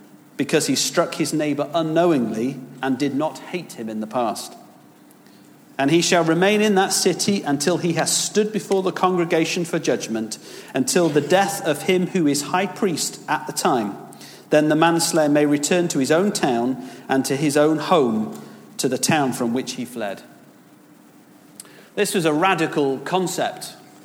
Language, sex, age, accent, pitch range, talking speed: English, male, 40-59, British, 140-175 Hz, 170 wpm